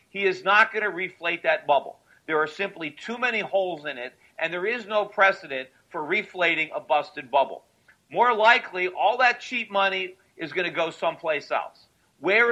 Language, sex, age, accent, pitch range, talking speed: English, male, 50-69, American, 155-200 Hz, 185 wpm